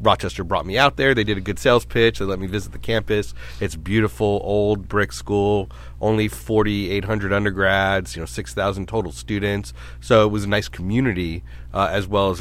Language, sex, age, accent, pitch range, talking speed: English, male, 30-49, American, 85-105 Hz, 195 wpm